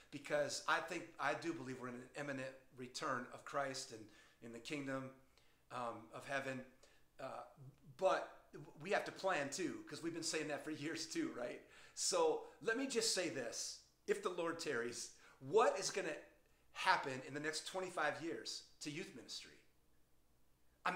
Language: English